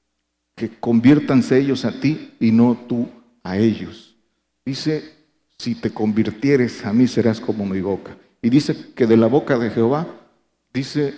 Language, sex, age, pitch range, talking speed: Spanish, male, 50-69, 110-130 Hz, 155 wpm